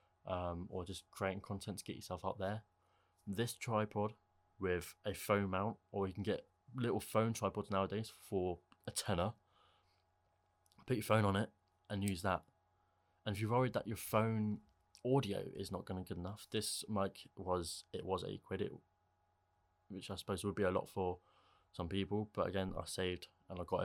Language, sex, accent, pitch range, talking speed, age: English, male, British, 90-105 Hz, 185 wpm, 20-39